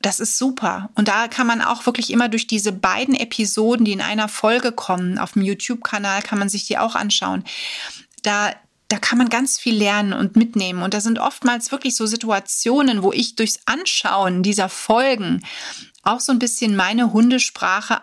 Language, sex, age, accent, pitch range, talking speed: German, female, 30-49, German, 195-240 Hz, 185 wpm